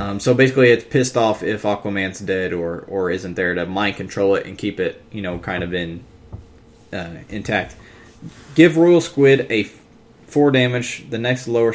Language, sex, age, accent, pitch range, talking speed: English, male, 20-39, American, 105-130 Hz, 185 wpm